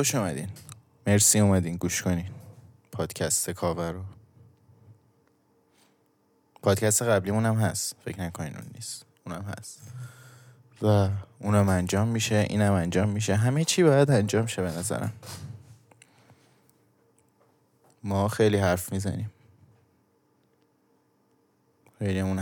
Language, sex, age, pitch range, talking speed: Persian, male, 20-39, 95-120 Hz, 105 wpm